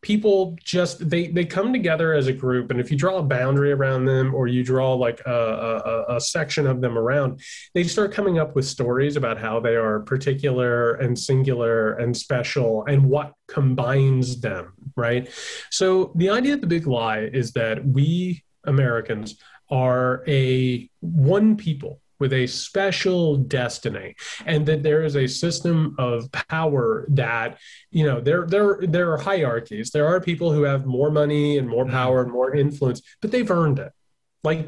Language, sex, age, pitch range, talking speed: English, male, 30-49, 130-170 Hz, 175 wpm